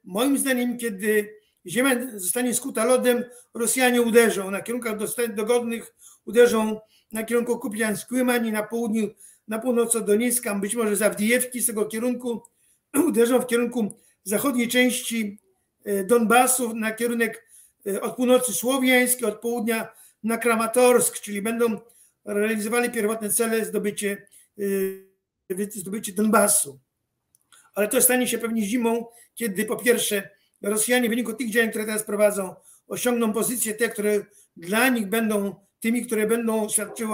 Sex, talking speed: male, 125 wpm